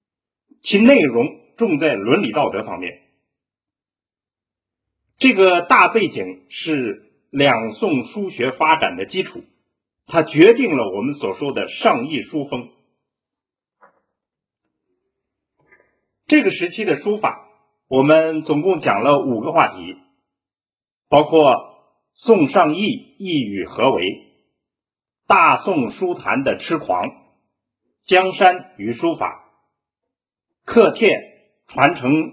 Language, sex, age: Chinese, male, 50-69